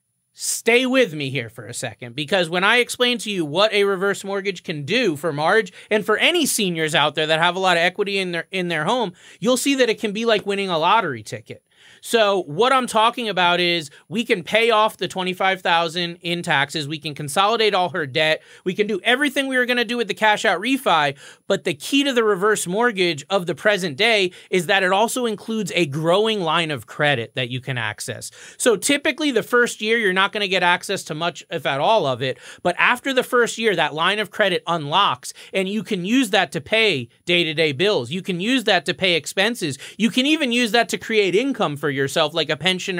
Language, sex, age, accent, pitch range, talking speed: English, male, 30-49, American, 170-230 Hz, 230 wpm